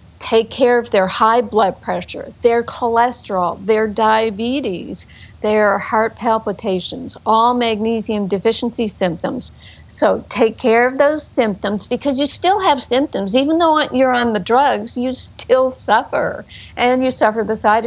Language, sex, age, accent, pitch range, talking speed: English, female, 60-79, American, 210-255 Hz, 145 wpm